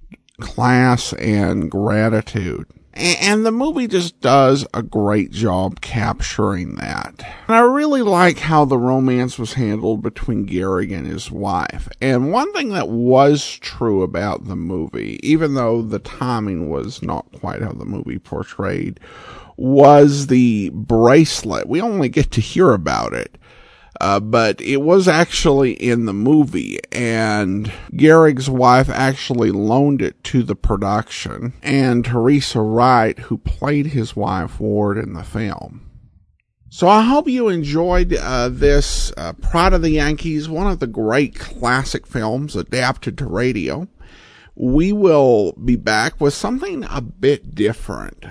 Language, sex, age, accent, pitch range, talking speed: English, male, 50-69, American, 110-145 Hz, 145 wpm